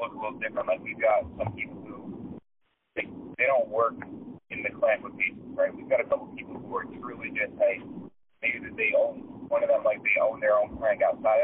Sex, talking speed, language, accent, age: male, 240 wpm, English, American, 30-49